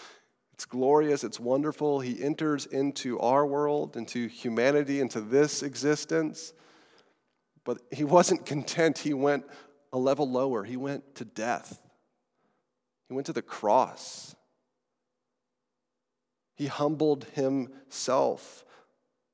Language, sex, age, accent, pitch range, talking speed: English, male, 30-49, American, 140-195 Hz, 110 wpm